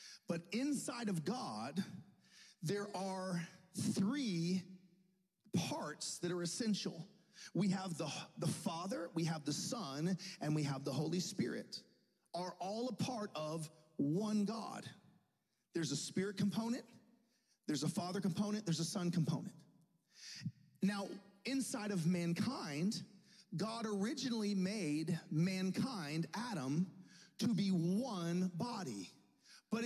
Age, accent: 40-59, American